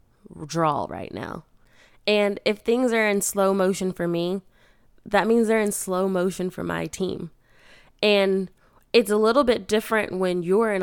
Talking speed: 165 wpm